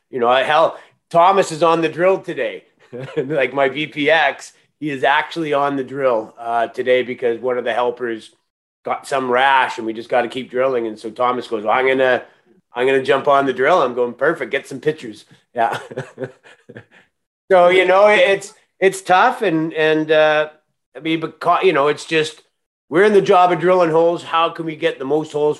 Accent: American